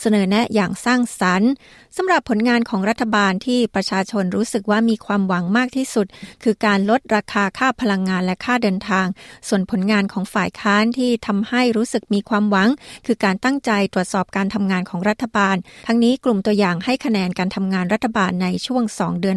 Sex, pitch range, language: female, 195-235 Hz, Thai